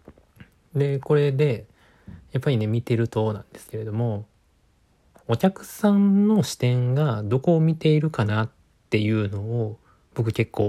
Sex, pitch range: male, 110-140 Hz